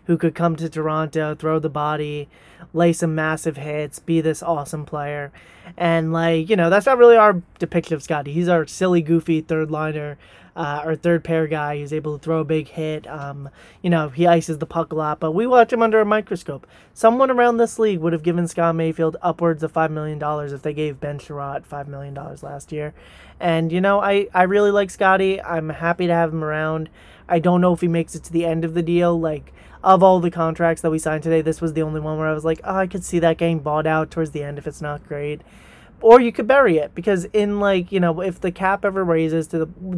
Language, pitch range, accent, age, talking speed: English, 155-175 Hz, American, 20-39, 235 wpm